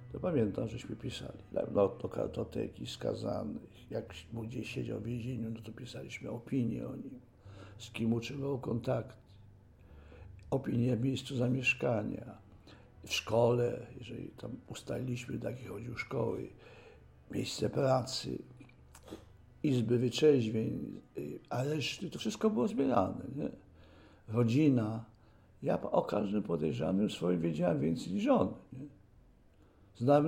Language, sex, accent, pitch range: Polish, male, native, 115-170 Hz